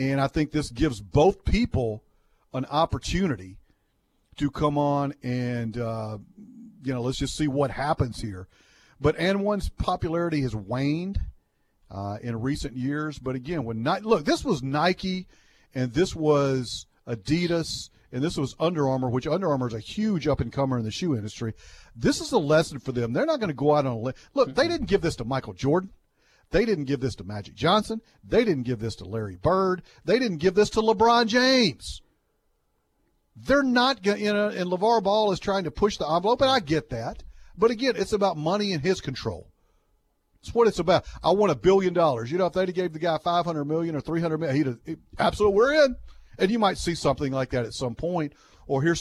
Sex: male